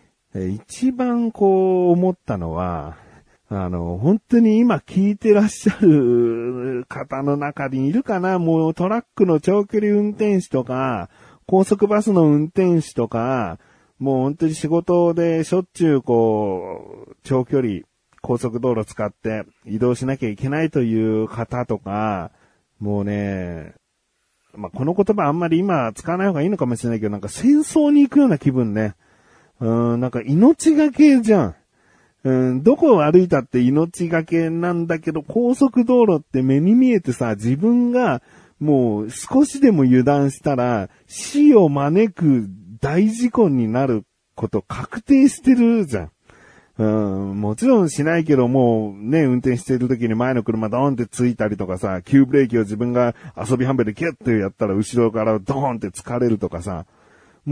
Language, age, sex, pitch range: Japanese, 40-59, male, 115-185 Hz